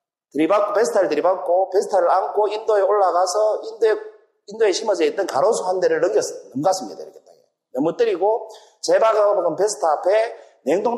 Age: 40-59